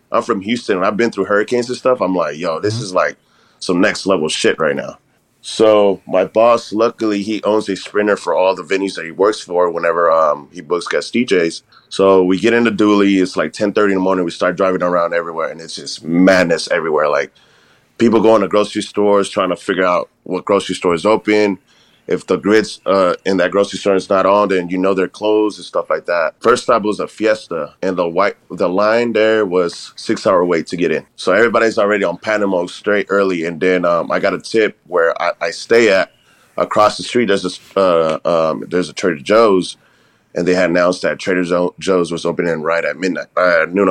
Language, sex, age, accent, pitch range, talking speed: English, male, 30-49, American, 90-105 Hz, 220 wpm